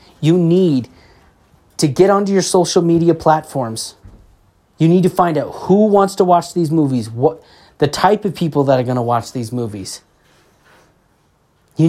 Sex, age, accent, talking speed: male, 30-49, American, 165 wpm